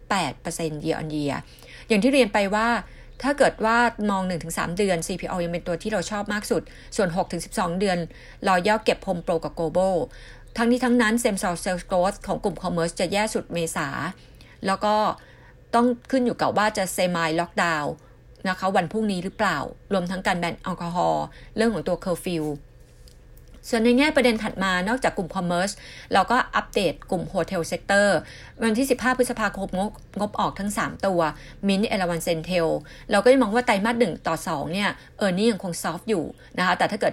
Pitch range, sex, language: 170-220 Hz, female, Thai